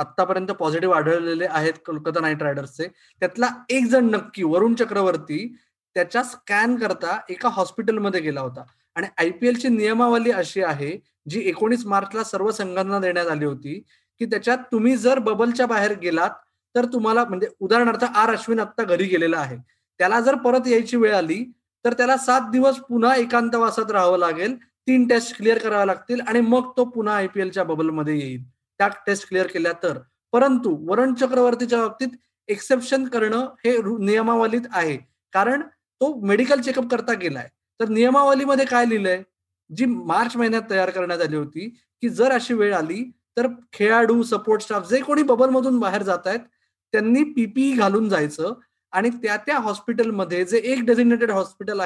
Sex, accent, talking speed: male, native, 120 wpm